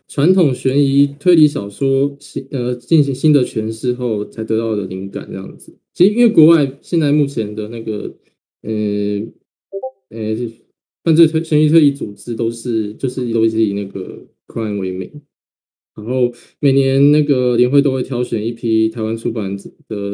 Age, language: 20-39, Chinese